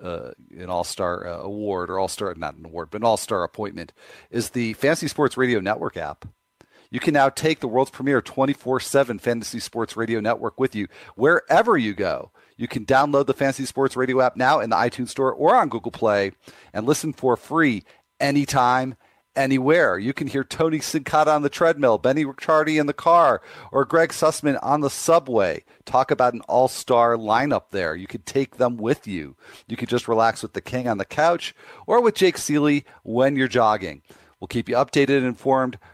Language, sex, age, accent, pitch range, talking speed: English, male, 40-59, American, 115-140 Hz, 195 wpm